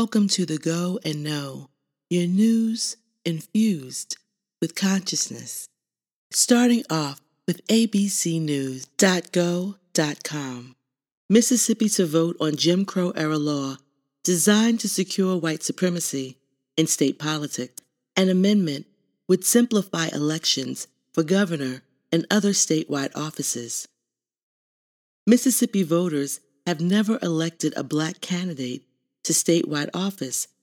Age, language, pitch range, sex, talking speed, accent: 40-59, English, 150-200 Hz, female, 105 wpm, American